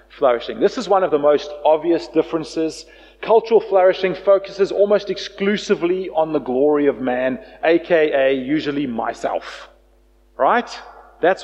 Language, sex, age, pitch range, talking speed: English, male, 40-59, 175-250 Hz, 125 wpm